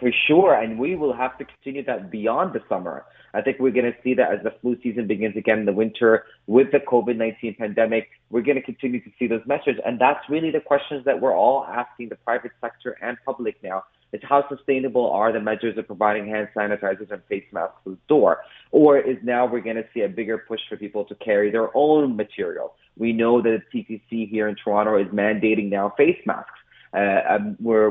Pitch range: 105-125 Hz